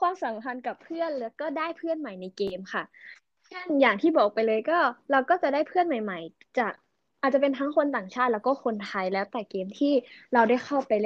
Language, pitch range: Thai, 205-275 Hz